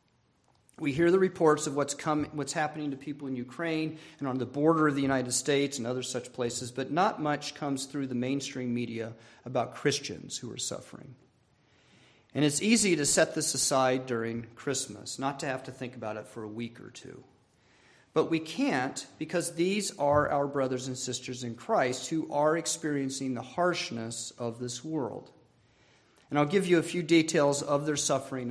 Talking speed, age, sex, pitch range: 185 wpm, 40-59, male, 120-155 Hz